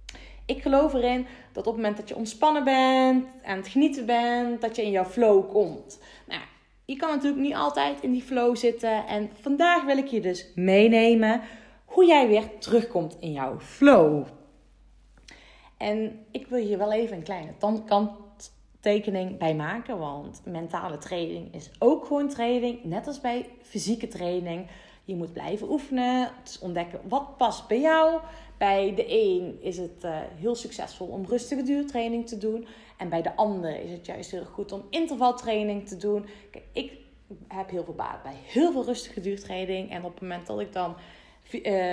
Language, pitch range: Dutch, 190-250 Hz